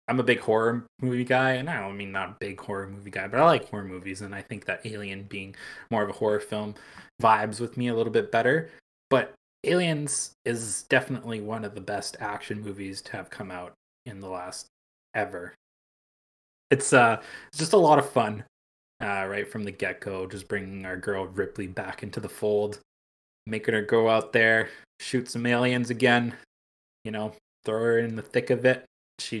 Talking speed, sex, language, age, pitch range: 200 wpm, male, English, 20-39, 95-125 Hz